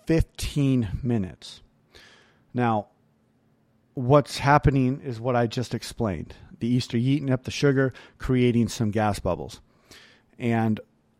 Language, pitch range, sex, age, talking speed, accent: English, 110-140 Hz, male, 40-59, 120 wpm, American